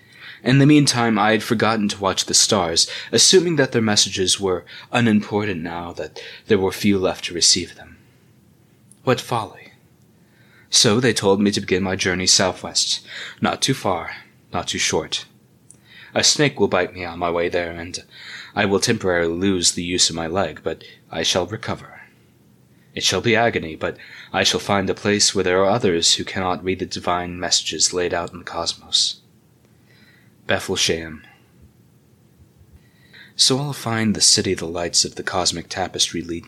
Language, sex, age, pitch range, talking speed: English, male, 20-39, 85-110 Hz, 170 wpm